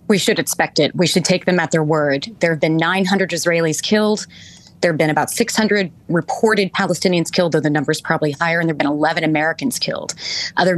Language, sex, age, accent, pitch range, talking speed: English, female, 30-49, American, 155-185 Hz, 215 wpm